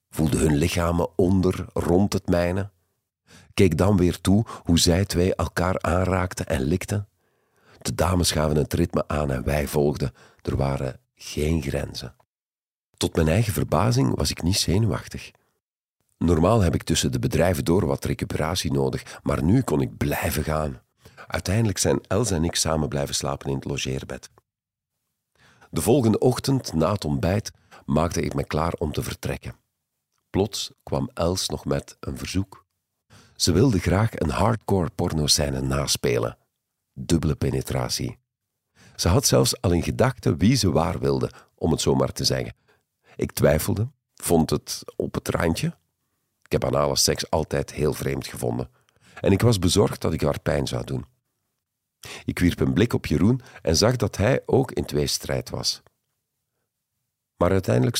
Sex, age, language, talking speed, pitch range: male, 50-69, Dutch, 160 wpm, 75-105 Hz